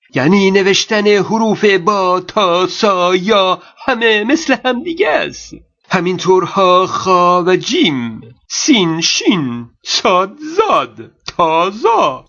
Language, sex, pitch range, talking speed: Persian, male, 180-250 Hz, 105 wpm